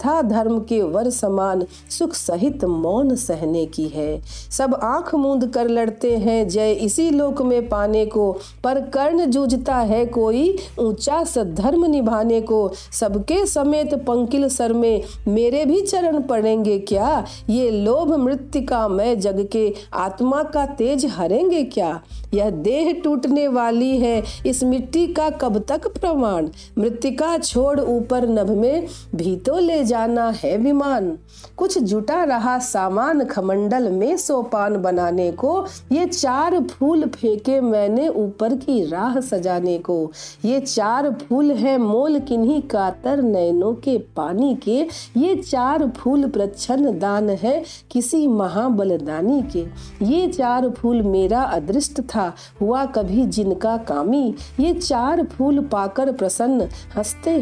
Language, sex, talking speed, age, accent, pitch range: Hindi, female, 135 wpm, 50-69, native, 210-280 Hz